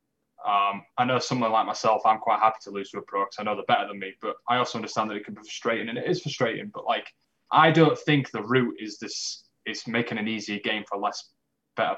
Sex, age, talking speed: male, 10-29, 250 wpm